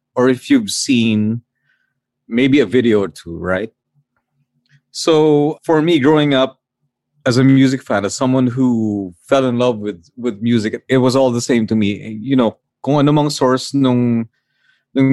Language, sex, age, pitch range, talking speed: English, male, 30-49, 110-135 Hz, 160 wpm